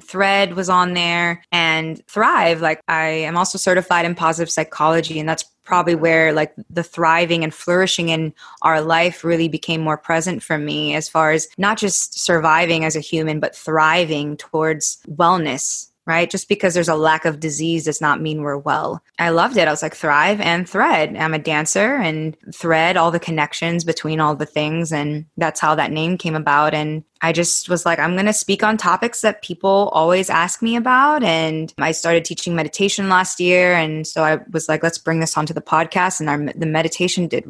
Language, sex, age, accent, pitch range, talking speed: English, female, 20-39, American, 160-180 Hz, 200 wpm